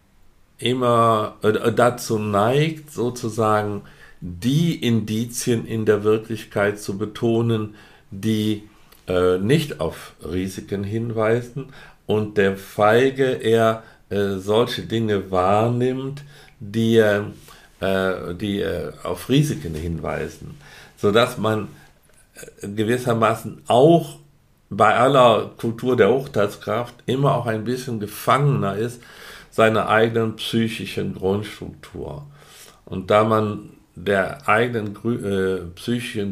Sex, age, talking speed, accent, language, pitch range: male, 50-69, 95 wpm, German, German, 100-120 Hz